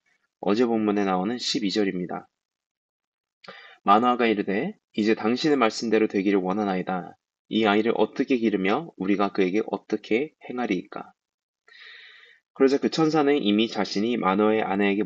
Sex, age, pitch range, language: male, 20-39, 100-120 Hz, Korean